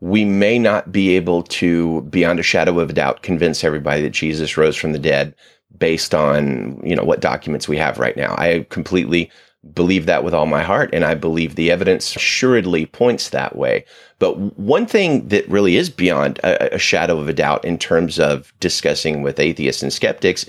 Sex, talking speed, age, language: male, 200 wpm, 30-49, English